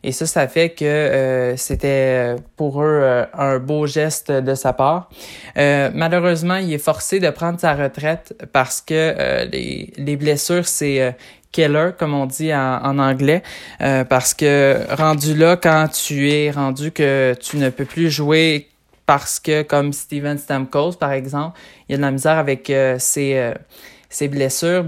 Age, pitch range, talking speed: 20-39, 140-170 Hz, 180 wpm